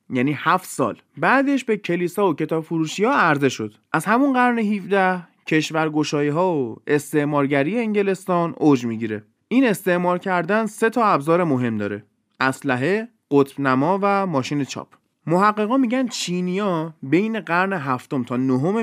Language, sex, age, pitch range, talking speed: Persian, male, 20-39, 130-195 Hz, 145 wpm